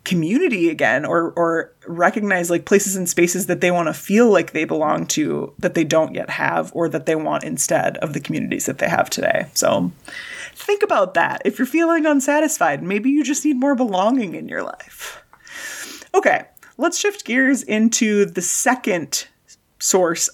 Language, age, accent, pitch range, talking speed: English, 30-49, American, 200-320 Hz, 175 wpm